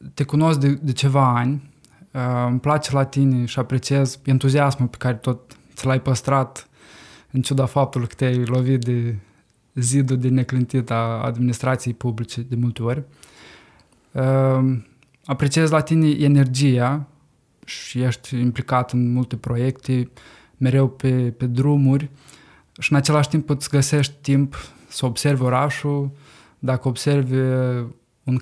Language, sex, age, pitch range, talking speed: Romanian, male, 20-39, 125-140 Hz, 135 wpm